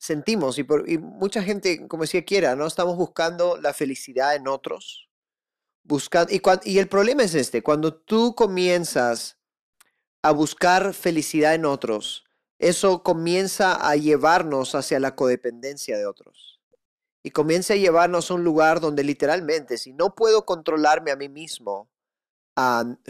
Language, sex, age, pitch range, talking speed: Spanish, male, 30-49, 130-175 Hz, 150 wpm